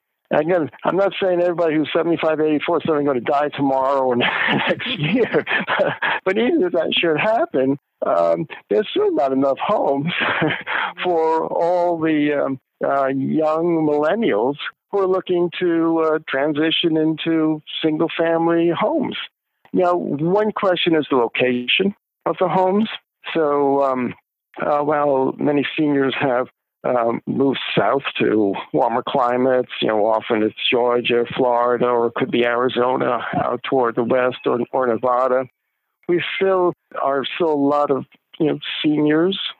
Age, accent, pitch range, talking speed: 60-79, American, 135-170 Hz, 140 wpm